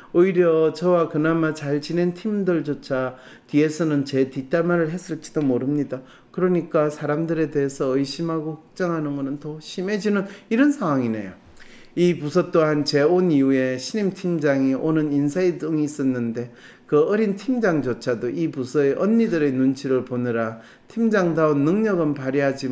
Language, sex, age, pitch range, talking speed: English, male, 40-59, 125-170 Hz, 115 wpm